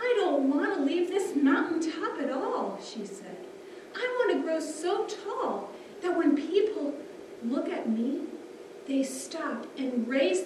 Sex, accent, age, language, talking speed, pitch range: female, American, 40-59, English, 155 wpm, 260-395 Hz